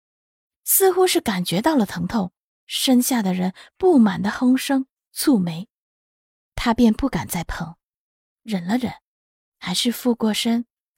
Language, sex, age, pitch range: Chinese, female, 20-39, 185-245 Hz